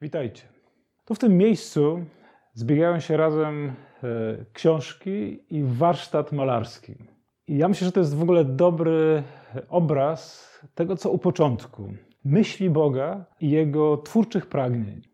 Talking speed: 125 wpm